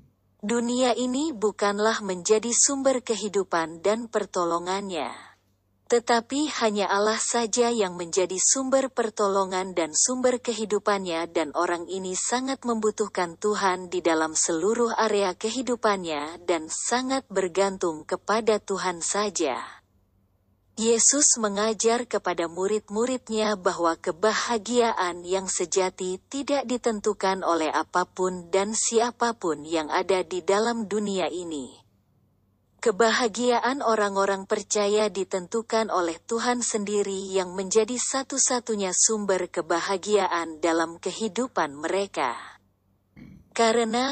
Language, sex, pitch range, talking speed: Indonesian, female, 180-230 Hz, 100 wpm